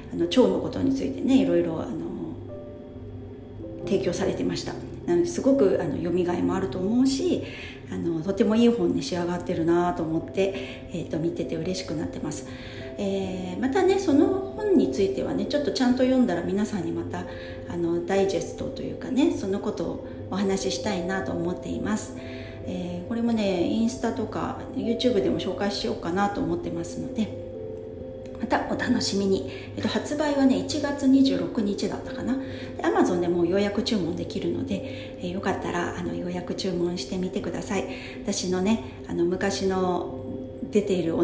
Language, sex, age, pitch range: Japanese, female, 40-59, 130-215 Hz